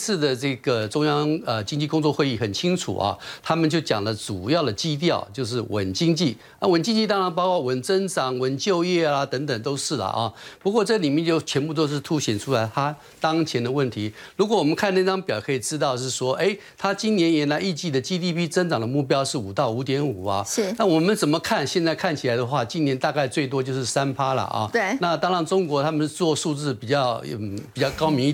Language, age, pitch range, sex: Chinese, 50-69, 130-175 Hz, male